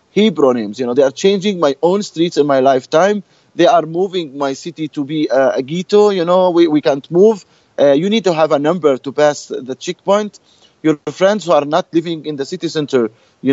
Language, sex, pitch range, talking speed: English, male, 145-175 Hz, 225 wpm